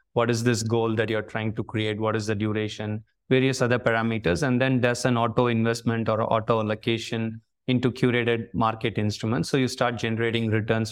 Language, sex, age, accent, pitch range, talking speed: English, male, 20-39, Indian, 110-125 Hz, 185 wpm